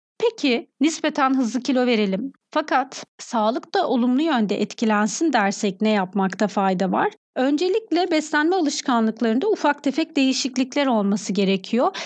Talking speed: 120 wpm